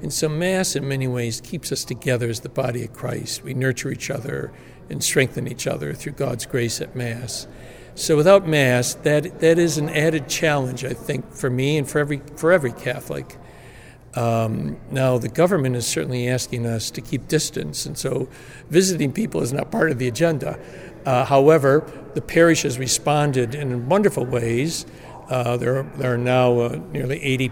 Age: 60-79